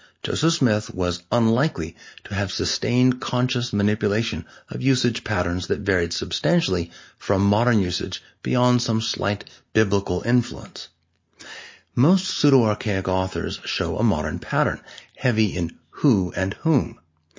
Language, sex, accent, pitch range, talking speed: English, male, American, 90-120 Hz, 120 wpm